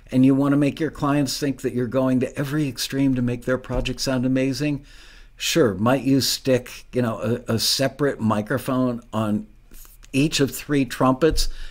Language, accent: English, American